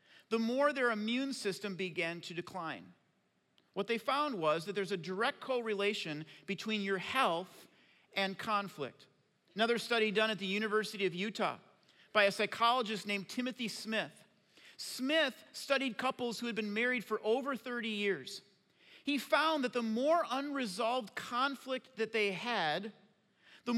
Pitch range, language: 195-250 Hz, English